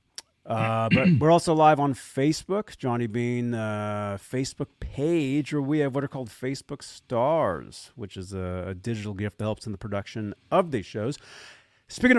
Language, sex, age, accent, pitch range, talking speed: English, male, 30-49, American, 110-160 Hz, 170 wpm